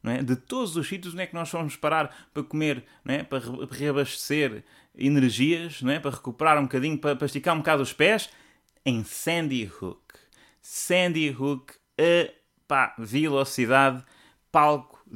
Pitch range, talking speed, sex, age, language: 115-160 Hz, 150 wpm, male, 20-39, English